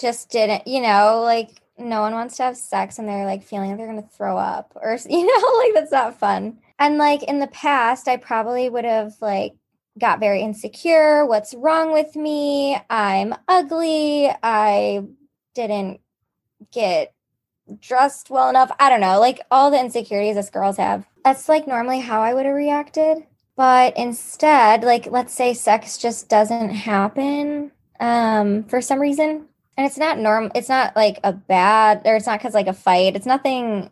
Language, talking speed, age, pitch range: English, 180 wpm, 10-29, 205-270 Hz